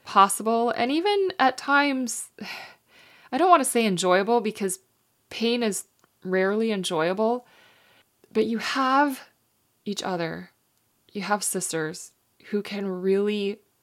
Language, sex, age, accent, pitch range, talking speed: English, female, 20-39, American, 175-220 Hz, 115 wpm